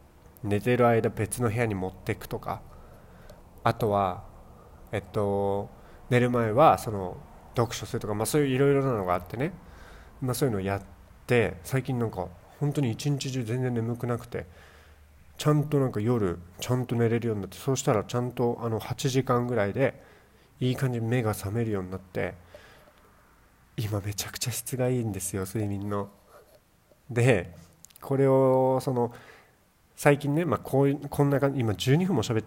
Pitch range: 100-130 Hz